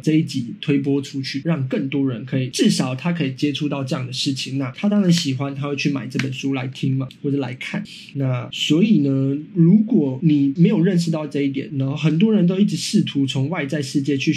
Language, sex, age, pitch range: Chinese, male, 20-39, 135-165 Hz